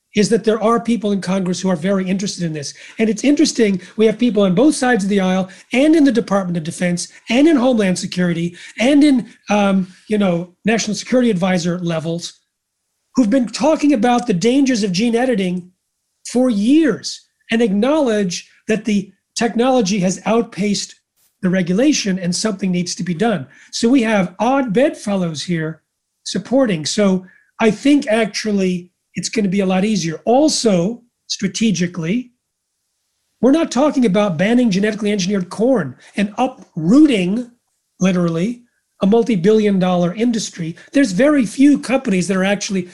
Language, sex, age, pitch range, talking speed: English, male, 40-59, 185-240 Hz, 155 wpm